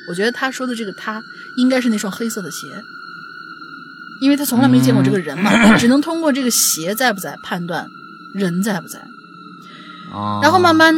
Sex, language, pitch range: female, Chinese, 195-285 Hz